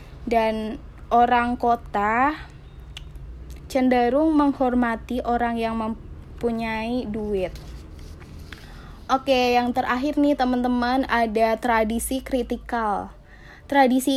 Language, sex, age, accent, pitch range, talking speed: Indonesian, female, 10-29, native, 235-265 Hz, 80 wpm